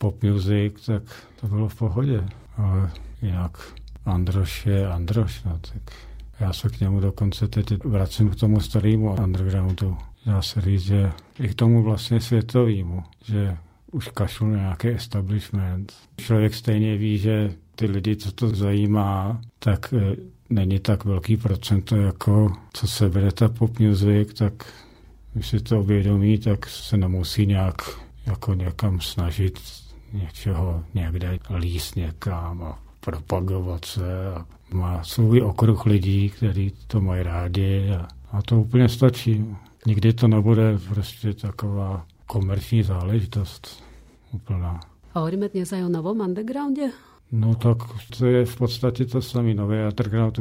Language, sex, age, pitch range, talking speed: Slovak, male, 50-69, 95-110 Hz, 140 wpm